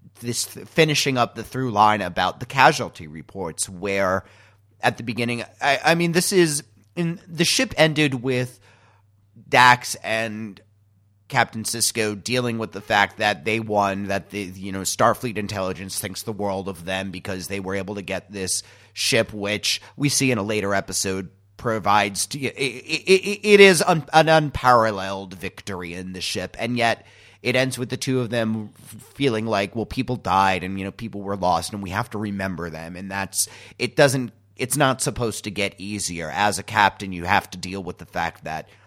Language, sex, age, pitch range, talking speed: English, male, 30-49, 100-125 Hz, 190 wpm